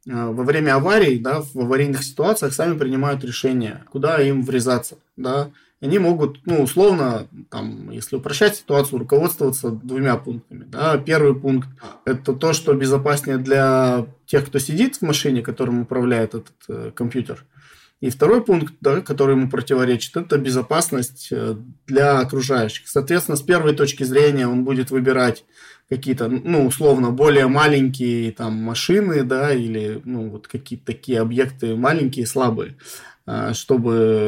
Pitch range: 120-145 Hz